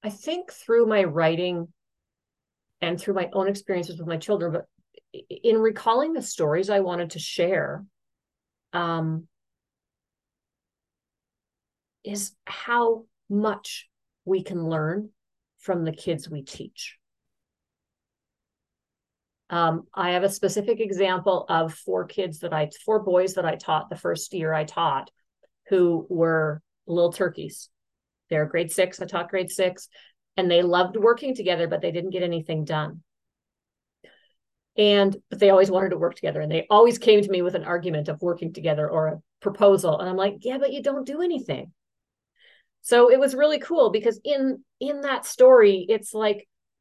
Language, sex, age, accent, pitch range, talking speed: English, female, 40-59, American, 170-225 Hz, 155 wpm